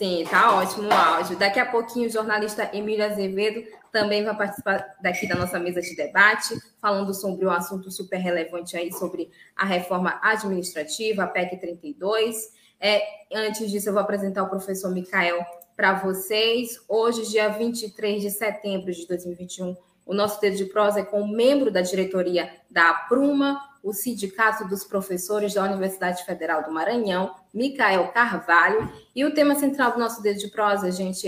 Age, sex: 20-39, female